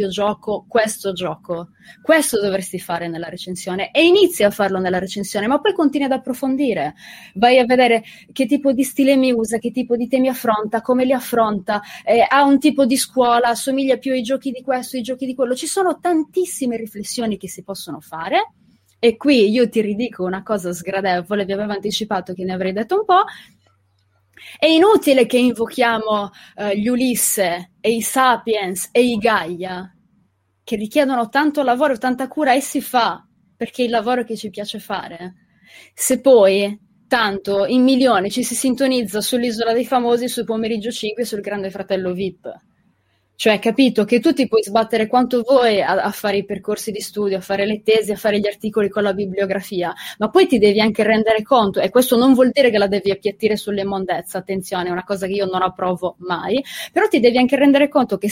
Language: Italian